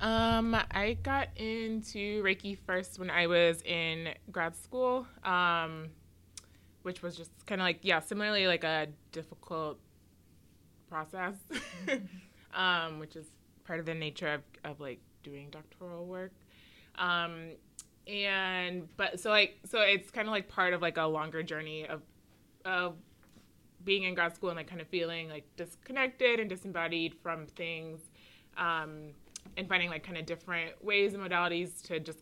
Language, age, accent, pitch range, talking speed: English, 20-39, American, 155-180 Hz, 155 wpm